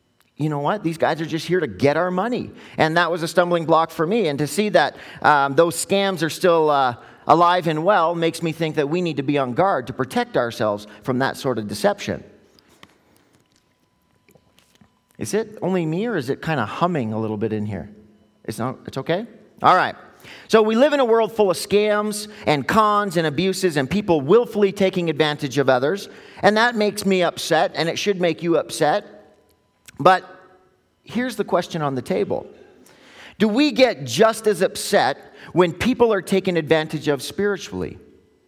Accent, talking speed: American, 190 wpm